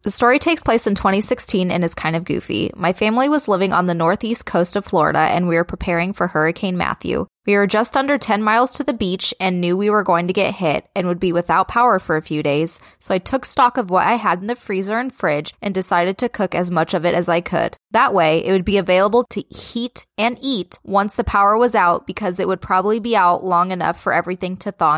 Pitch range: 175-230 Hz